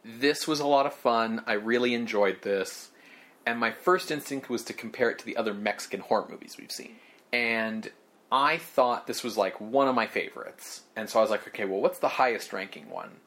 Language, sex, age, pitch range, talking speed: English, male, 30-49, 115-145 Hz, 215 wpm